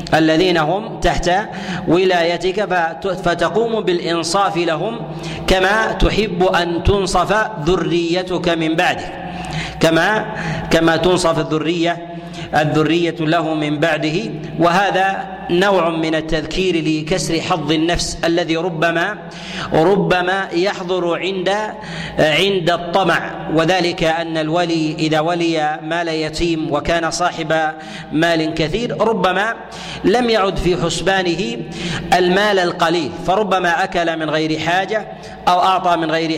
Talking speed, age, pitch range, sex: 105 wpm, 40-59, 160-185 Hz, male